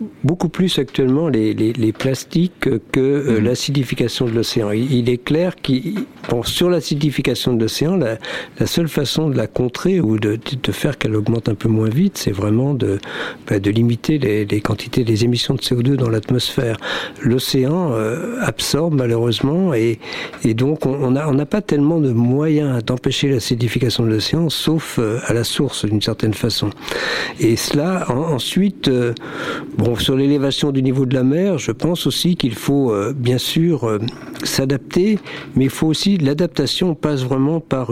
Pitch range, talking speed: 115-150 Hz, 180 wpm